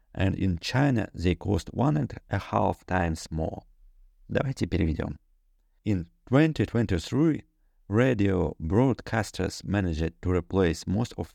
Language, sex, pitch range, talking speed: Russian, male, 85-115 Hz, 115 wpm